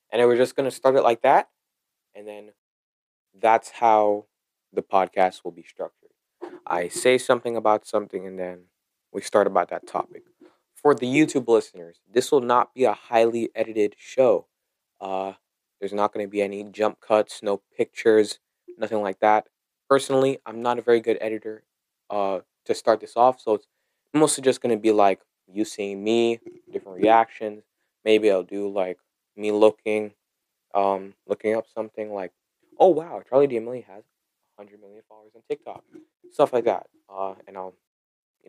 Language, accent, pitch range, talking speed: English, American, 105-135 Hz, 170 wpm